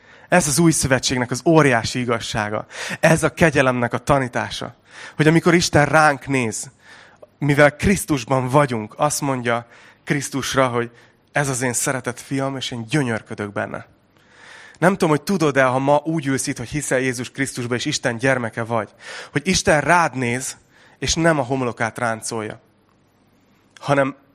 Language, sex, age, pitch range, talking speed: Hungarian, male, 30-49, 115-150 Hz, 150 wpm